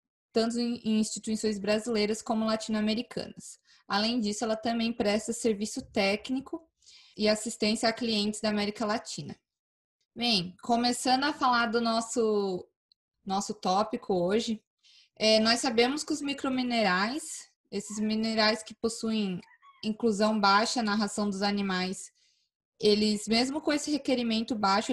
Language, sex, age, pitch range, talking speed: Portuguese, female, 20-39, 205-245 Hz, 120 wpm